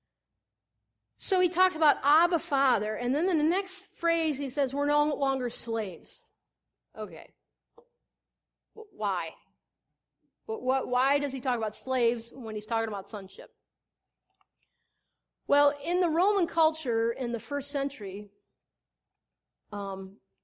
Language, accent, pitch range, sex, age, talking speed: English, American, 205-280 Hz, female, 40-59, 120 wpm